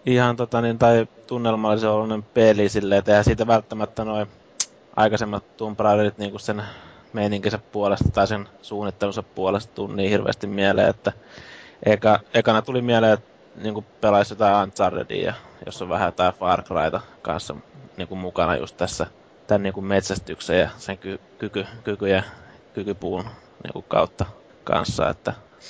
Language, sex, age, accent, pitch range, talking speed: Finnish, male, 20-39, native, 100-110 Hz, 135 wpm